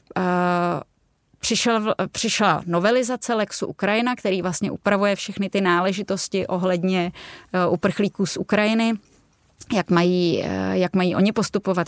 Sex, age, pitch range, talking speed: female, 20-39, 185-215 Hz, 100 wpm